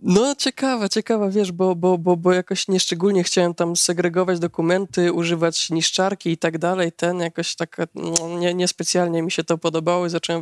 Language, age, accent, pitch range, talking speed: Polish, 20-39, native, 165-185 Hz, 180 wpm